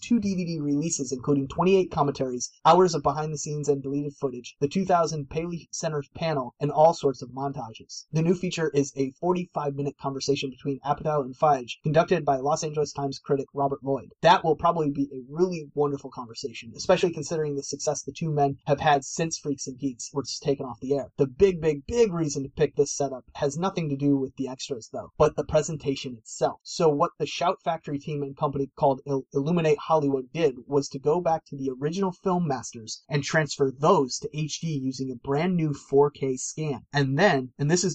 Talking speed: 205 wpm